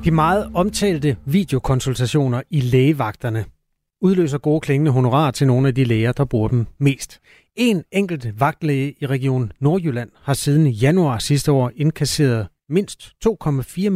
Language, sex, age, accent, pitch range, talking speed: Danish, male, 30-49, native, 120-155 Hz, 140 wpm